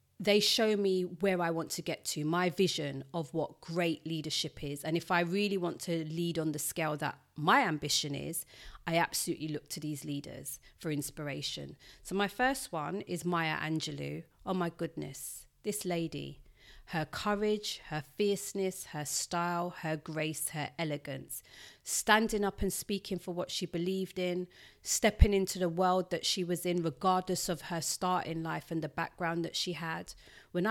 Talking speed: 175 wpm